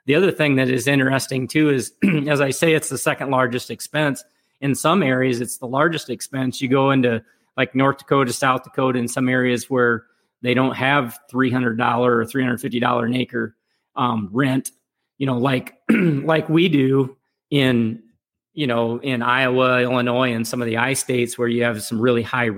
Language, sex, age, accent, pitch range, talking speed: English, male, 40-59, American, 120-140 Hz, 185 wpm